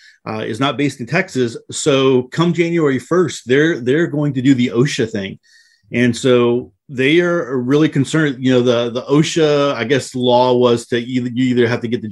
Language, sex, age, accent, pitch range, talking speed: English, male, 40-59, American, 120-135 Hz, 205 wpm